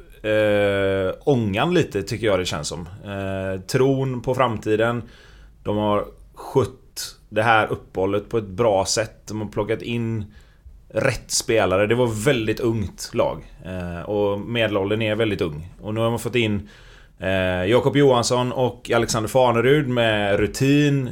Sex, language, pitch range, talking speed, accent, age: male, Swedish, 100-120 Hz, 150 wpm, native, 30-49